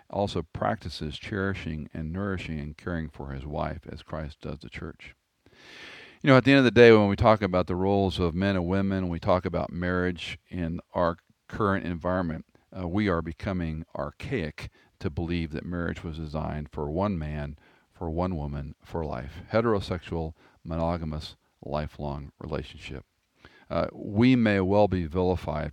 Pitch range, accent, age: 80-95 Hz, American, 50-69